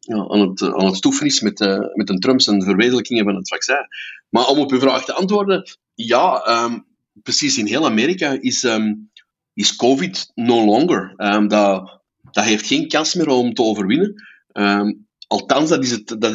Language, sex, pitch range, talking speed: Dutch, male, 105-145 Hz, 190 wpm